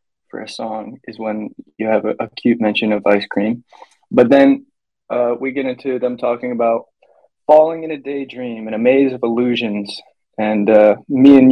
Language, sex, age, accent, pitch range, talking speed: English, male, 20-39, American, 110-130 Hz, 180 wpm